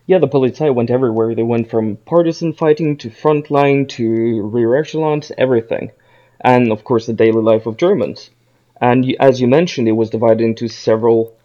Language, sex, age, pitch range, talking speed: English, male, 20-39, 115-150 Hz, 180 wpm